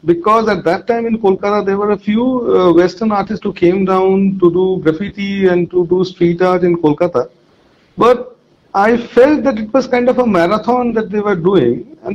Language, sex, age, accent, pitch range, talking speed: English, male, 40-59, Indian, 170-225 Hz, 200 wpm